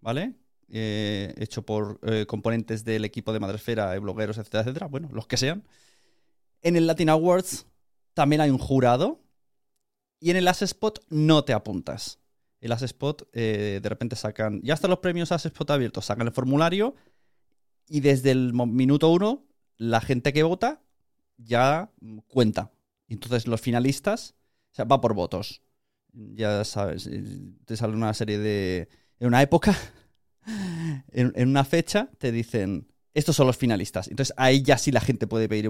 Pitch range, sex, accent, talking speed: 110-140 Hz, male, Spanish, 160 wpm